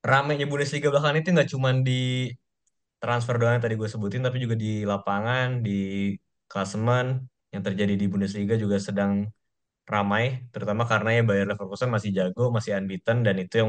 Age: 20-39